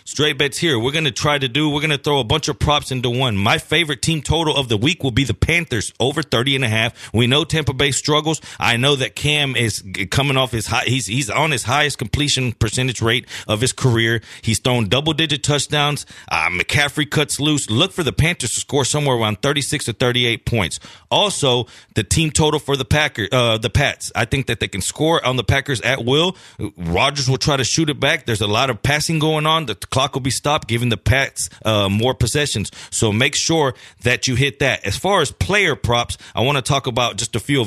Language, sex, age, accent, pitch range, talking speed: English, male, 30-49, American, 115-145 Hz, 235 wpm